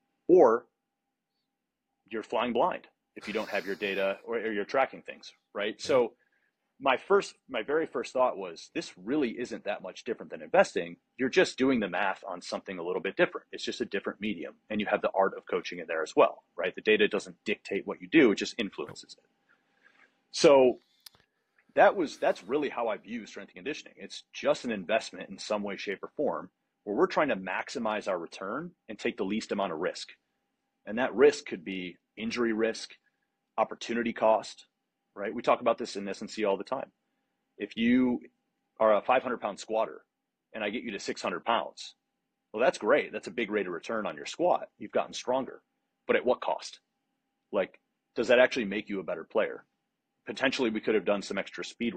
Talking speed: 205 wpm